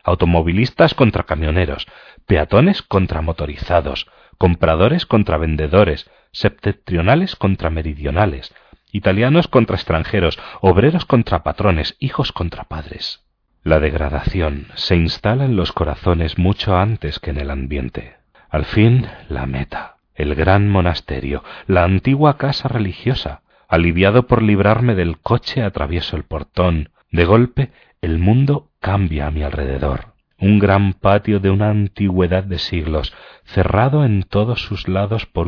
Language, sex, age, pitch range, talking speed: Spanish, male, 40-59, 80-105 Hz, 125 wpm